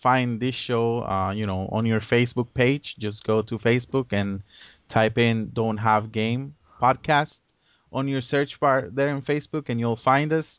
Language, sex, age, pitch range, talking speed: English, male, 20-39, 105-125 Hz, 180 wpm